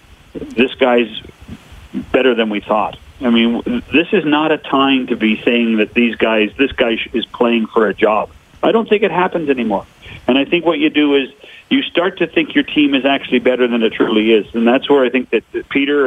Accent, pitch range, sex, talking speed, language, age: American, 115-150 Hz, male, 220 wpm, English, 50-69